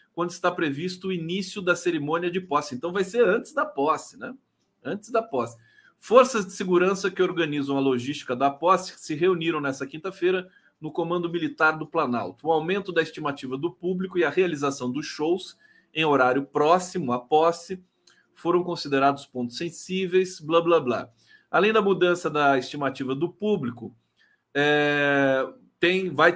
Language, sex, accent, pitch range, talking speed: Portuguese, male, Brazilian, 140-190 Hz, 155 wpm